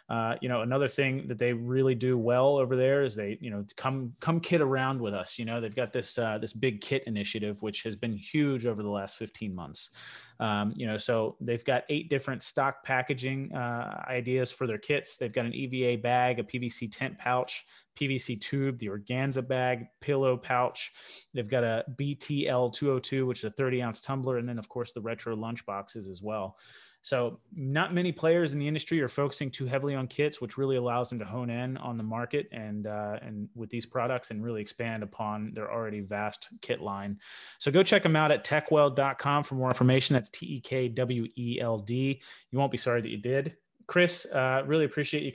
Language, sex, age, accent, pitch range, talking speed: English, male, 30-49, American, 115-135 Hz, 205 wpm